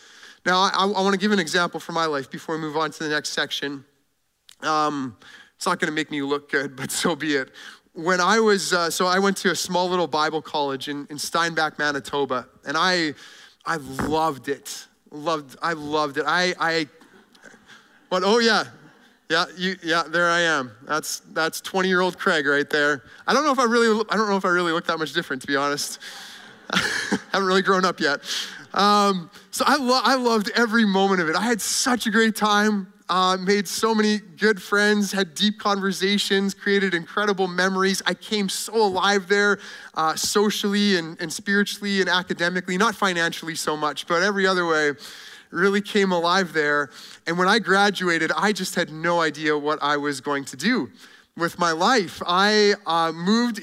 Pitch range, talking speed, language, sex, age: 160-205 Hz, 190 wpm, English, male, 30-49